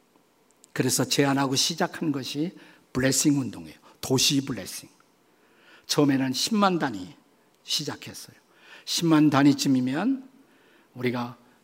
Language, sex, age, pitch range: Korean, male, 50-69, 135-180 Hz